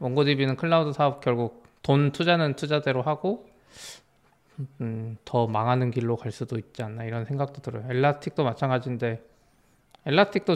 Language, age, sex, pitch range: Korean, 20-39, male, 125-160 Hz